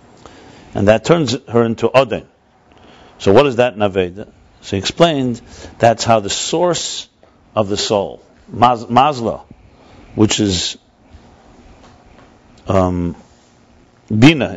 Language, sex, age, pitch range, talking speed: English, male, 60-79, 95-115 Hz, 110 wpm